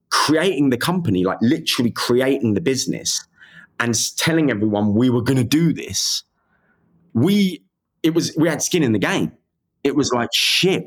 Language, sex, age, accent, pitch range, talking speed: English, male, 30-49, British, 105-135 Hz, 165 wpm